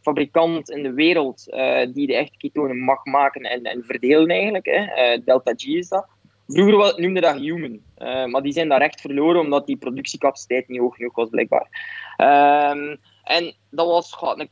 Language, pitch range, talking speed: Dutch, 135-185 Hz, 190 wpm